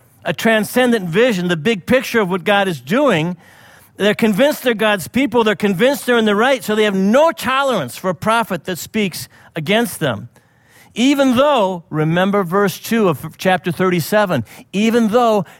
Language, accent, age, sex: English, American, 50-69, male